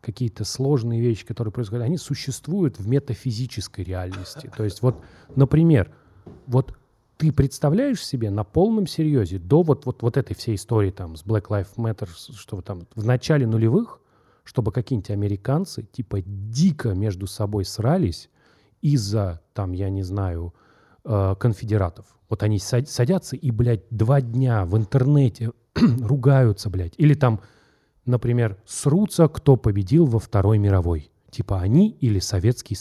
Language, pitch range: Russian, 105-135 Hz